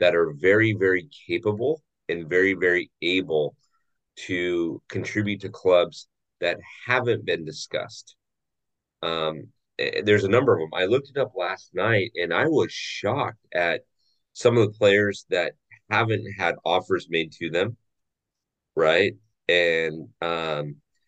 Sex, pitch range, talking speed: male, 85-120 Hz, 135 wpm